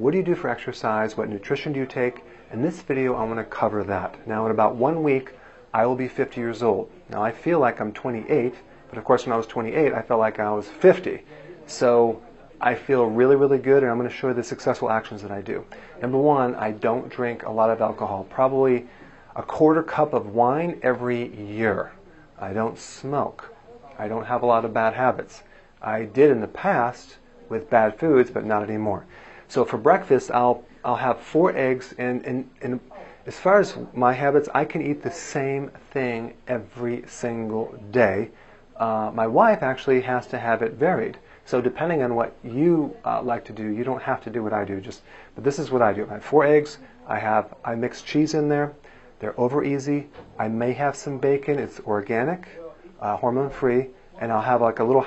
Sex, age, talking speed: male, 40-59, 210 wpm